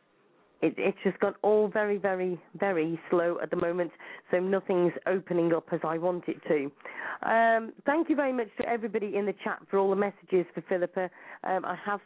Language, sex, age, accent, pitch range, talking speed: English, female, 40-59, British, 180-210 Hz, 200 wpm